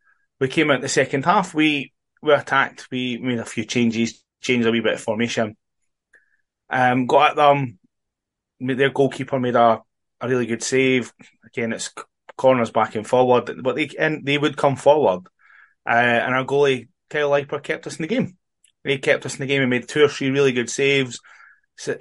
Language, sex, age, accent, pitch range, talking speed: English, male, 20-39, British, 115-135 Hz, 195 wpm